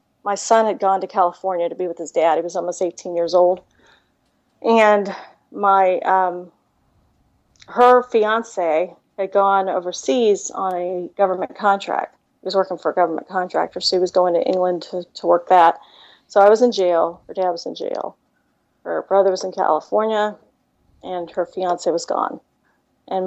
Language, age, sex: English, 40-59, female